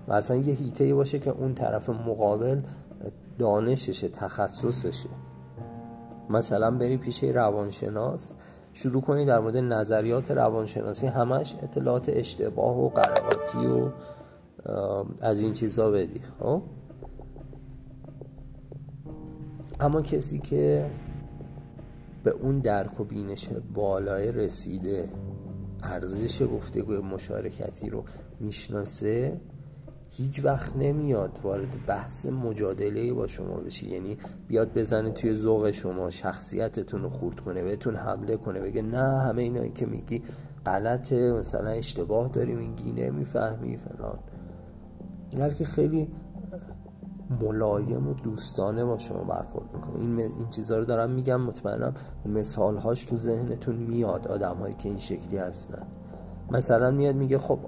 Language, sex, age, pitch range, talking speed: Persian, male, 40-59, 100-135 Hz, 120 wpm